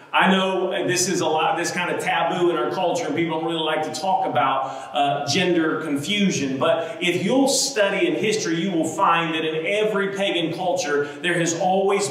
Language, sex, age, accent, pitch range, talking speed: English, male, 40-59, American, 160-200 Hz, 205 wpm